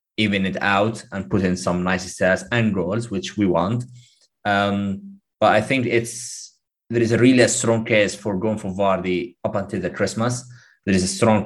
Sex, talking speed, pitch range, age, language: male, 200 wpm, 90-115 Hz, 30-49, English